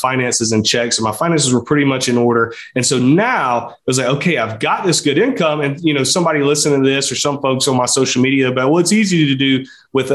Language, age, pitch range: English, 30-49, 115-140 Hz